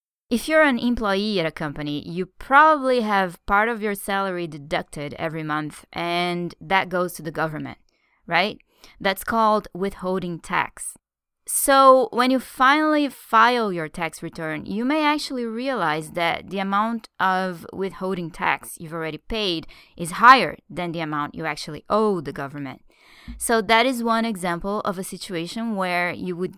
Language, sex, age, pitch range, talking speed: English, female, 20-39, 165-225 Hz, 160 wpm